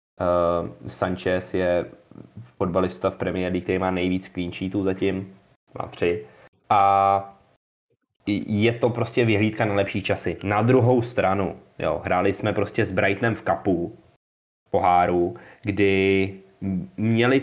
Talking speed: 125 wpm